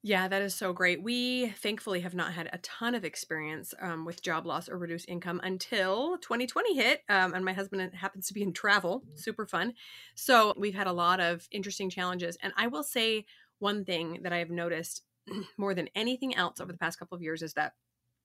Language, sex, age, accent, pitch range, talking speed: English, female, 30-49, American, 175-215 Hz, 215 wpm